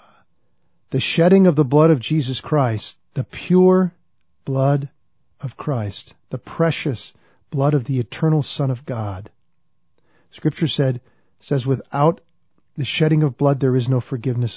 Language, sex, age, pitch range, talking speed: English, male, 50-69, 120-150 Hz, 140 wpm